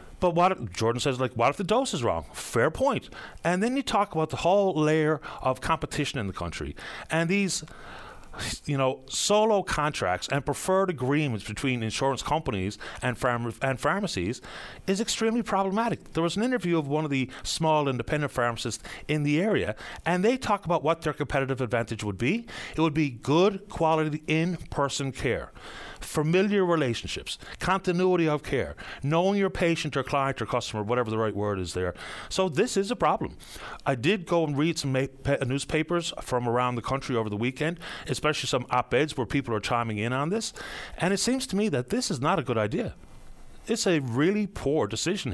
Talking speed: 185 wpm